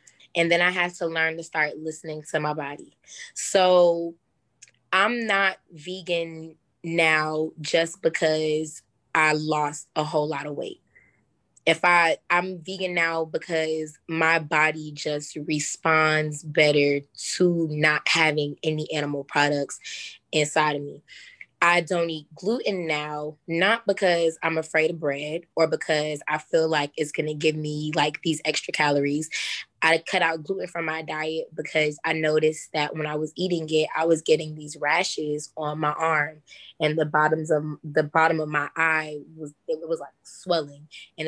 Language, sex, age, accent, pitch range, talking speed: English, female, 20-39, American, 150-165 Hz, 160 wpm